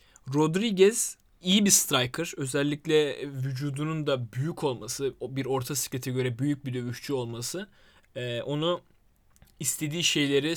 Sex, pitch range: male, 120-150 Hz